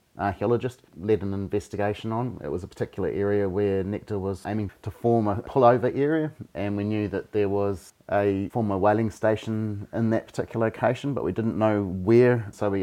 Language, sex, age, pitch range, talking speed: English, male, 30-49, 95-115 Hz, 185 wpm